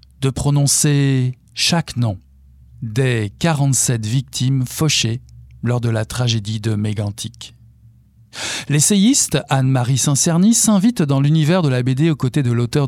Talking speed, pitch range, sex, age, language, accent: 125 wpm, 115-155 Hz, male, 50-69, French, French